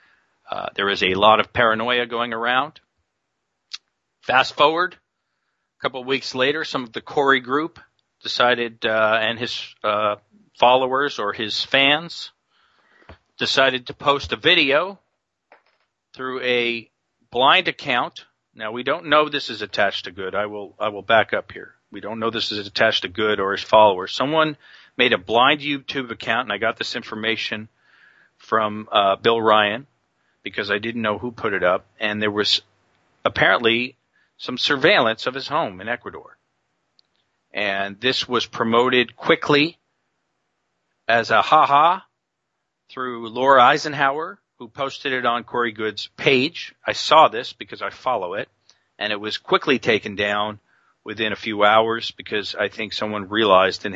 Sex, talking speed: male, 155 wpm